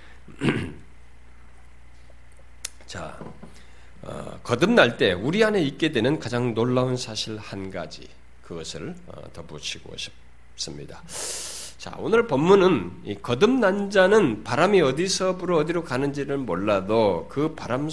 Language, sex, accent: Korean, male, native